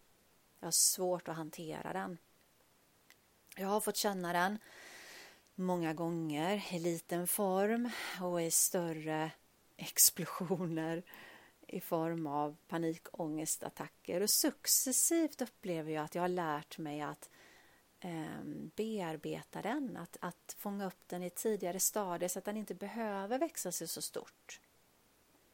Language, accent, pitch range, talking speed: Swedish, native, 160-210 Hz, 125 wpm